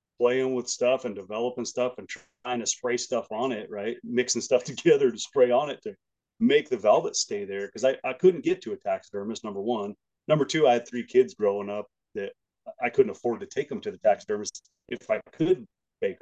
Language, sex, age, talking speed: English, male, 30-49, 220 wpm